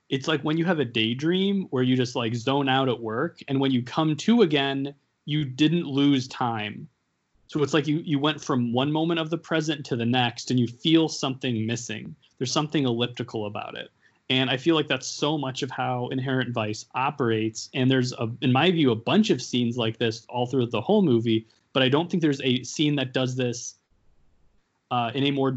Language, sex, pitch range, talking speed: English, male, 120-150 Hz, 220 wpm